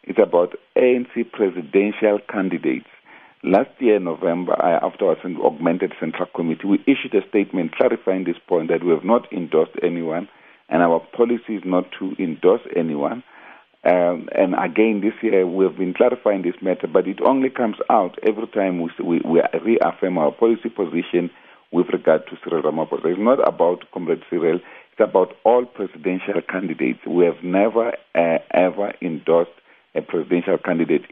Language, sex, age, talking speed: English, male, 50-69, 160 wpm